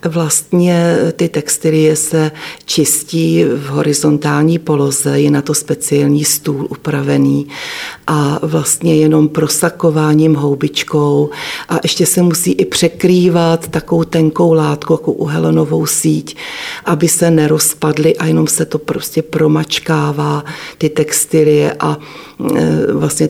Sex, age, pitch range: female, 40-59, 145-160 Hz